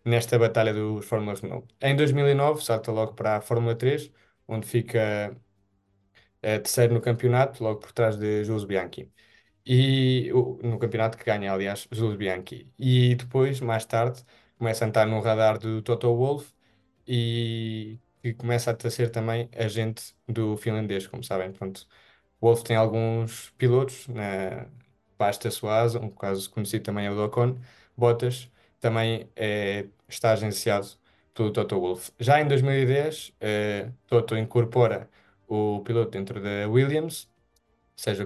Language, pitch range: Portuguese, 105-120 Hz